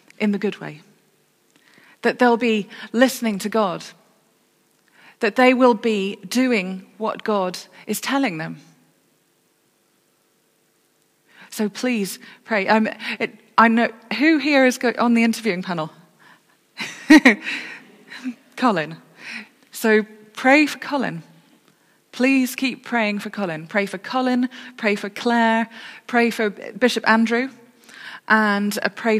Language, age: English, 30-49